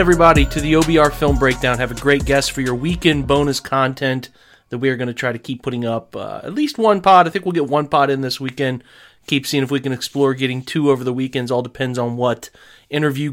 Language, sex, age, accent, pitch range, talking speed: English, male, 30-49, American, 125-160 Hz, 250 wpm